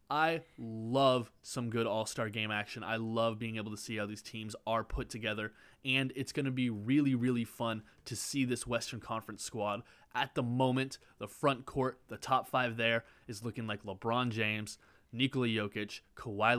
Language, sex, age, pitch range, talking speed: English, male, 20-39, 105-130 Hz, 185 wpm